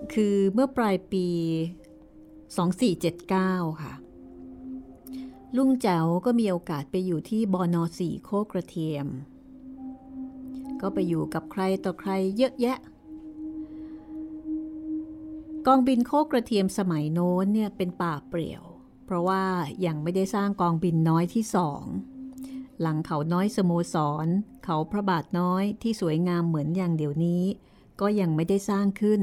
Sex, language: female, Thai